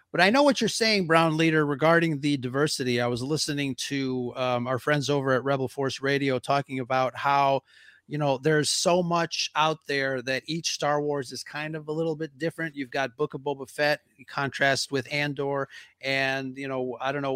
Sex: male